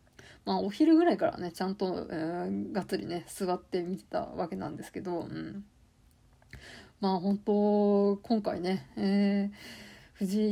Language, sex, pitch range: Japanese, female, 195-235 Hz